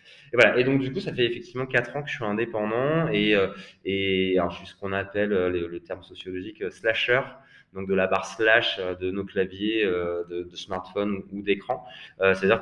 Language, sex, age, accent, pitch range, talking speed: French, male, 20-39, French, 95-110 Hz, 230 wpm